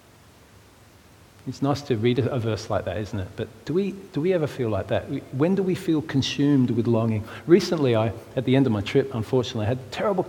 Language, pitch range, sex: English, 105-130 Hz, male